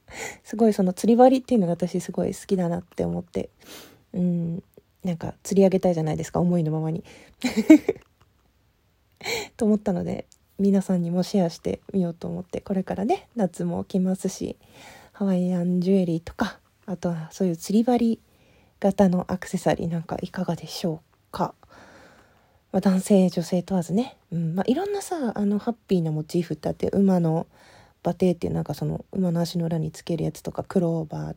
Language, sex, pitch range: Japanese, female, 170-205 Hz